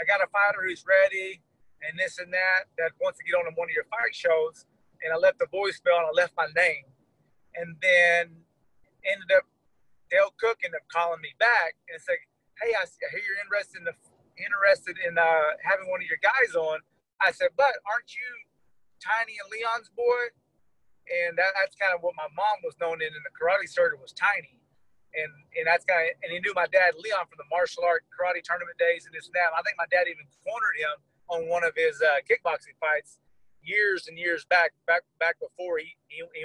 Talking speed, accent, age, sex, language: 220 wpm, American, 30-49, male, English